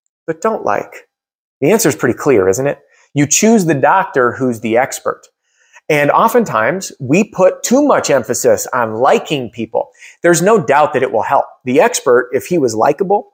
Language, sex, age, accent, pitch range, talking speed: English, male, 30-49, American, 120-180 Hz, 180 wpm